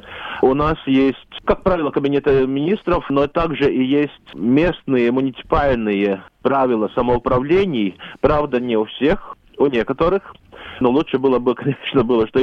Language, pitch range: Russian, 125-155 Hz